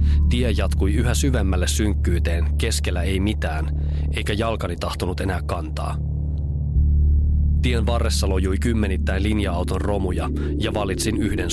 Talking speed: 115 wpm